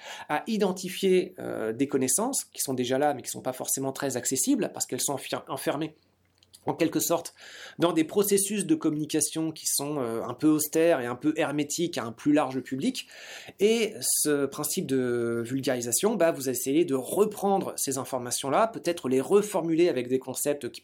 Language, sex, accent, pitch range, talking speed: French, male, French, 125-175 Hz, 180 wpm